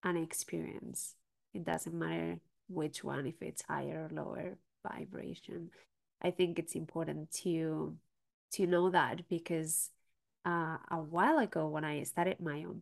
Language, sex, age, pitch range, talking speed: English, female, 20-39, 160-180 Hz, 145 wpm